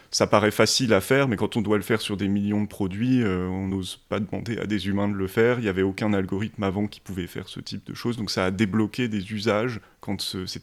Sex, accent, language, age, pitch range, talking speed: male, French, French, 30-49, 100-115 Hz, 275 wpm